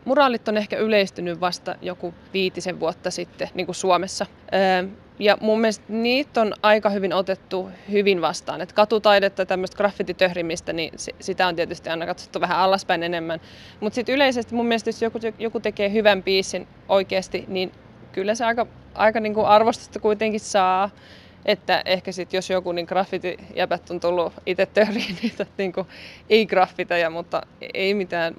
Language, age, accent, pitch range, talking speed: Finnish, 20-39, native, 175-210 Hz, 155 wpm